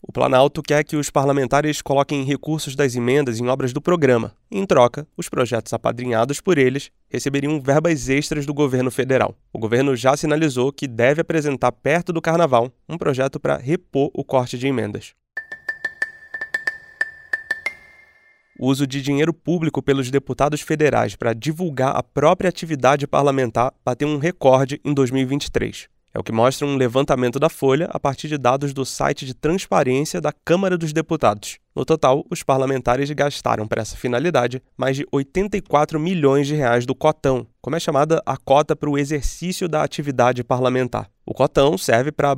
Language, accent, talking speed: Portuguese, Brazilian, 165 wpm